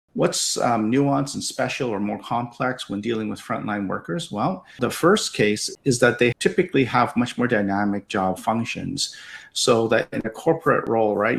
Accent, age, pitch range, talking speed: American, 50-69, 100-115 Hz, 180 wpm